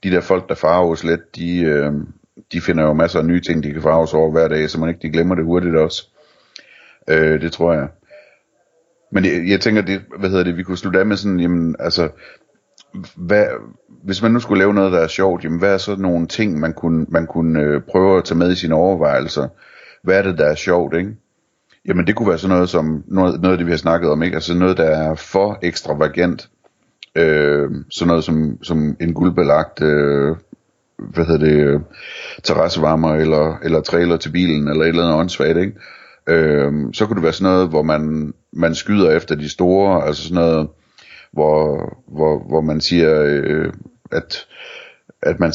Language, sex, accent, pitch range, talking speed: Danish, male, native, 75-90 Hz, 205 wpm